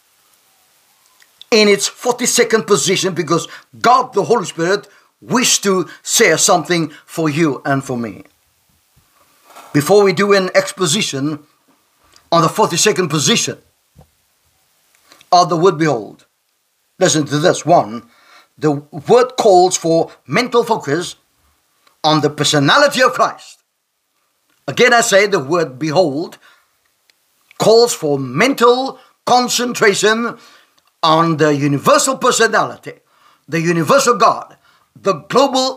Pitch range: 165-235 Hz